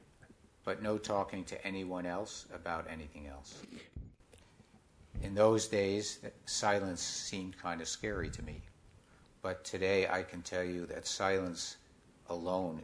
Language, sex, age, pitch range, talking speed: English, male, 60-79, 80-100 Hz, 130 wpm